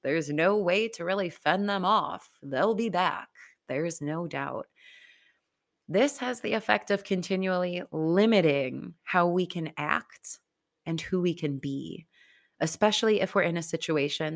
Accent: American